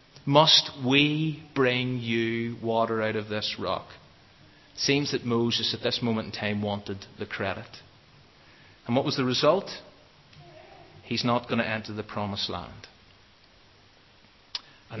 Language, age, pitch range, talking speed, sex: English, 30-49, 105-125 Hz, 135 wpm, male